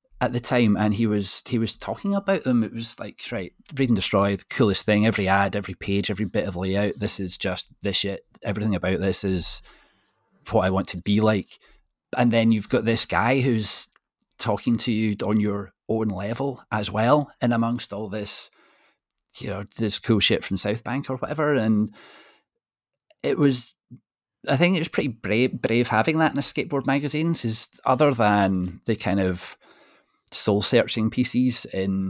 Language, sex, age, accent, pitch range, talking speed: English, male, 30-49, British, 100-120 Hz, 185 wpm